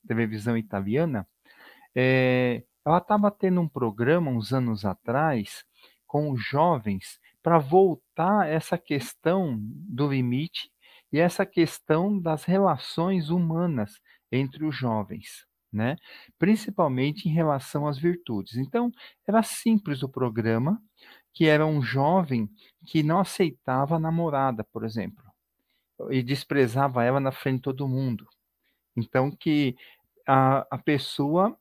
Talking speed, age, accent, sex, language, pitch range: 120 wpm, 40-59, Brazilian, male, Portuguese, 125-170 Hz